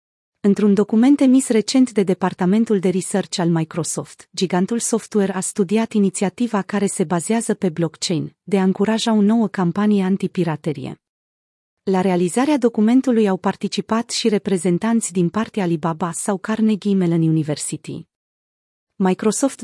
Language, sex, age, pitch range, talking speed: Romanian, female, 30-49, 180-220 Hz, 130 wpm